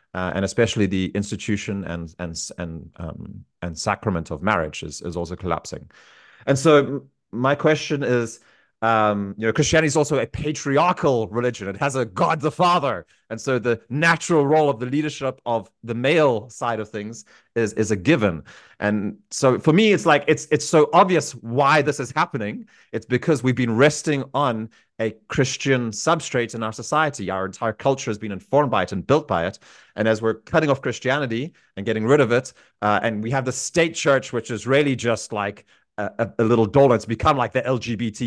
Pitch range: 100-140 Hz